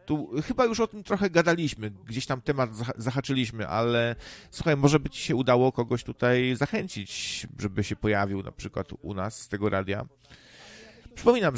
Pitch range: 110-140 Hz